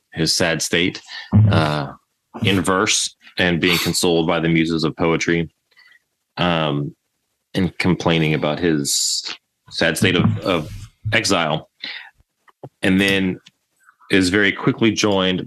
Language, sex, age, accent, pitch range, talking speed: English, male, 30-49, American, 80-100 Hz, 115 wpm